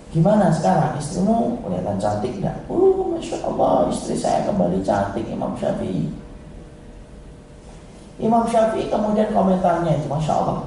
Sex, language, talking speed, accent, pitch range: male, Indonesian, 120 wpm, native, 155-195 Hz